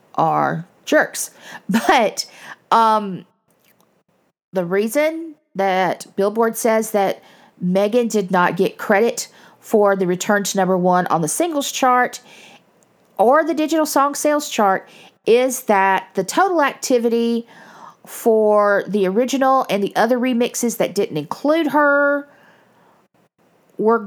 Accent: American